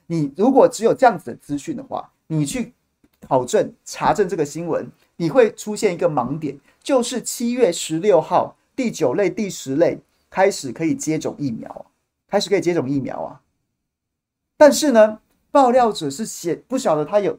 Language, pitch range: Chinese, 155-230 Hz